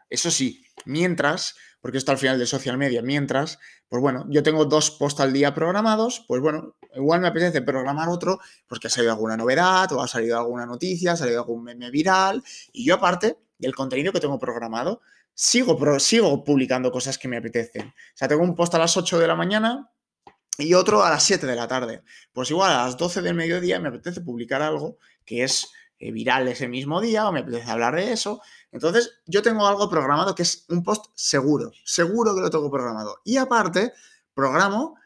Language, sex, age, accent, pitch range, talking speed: Spanish, male, 20-39, Spanish, 130-195 Hz, 200 wpm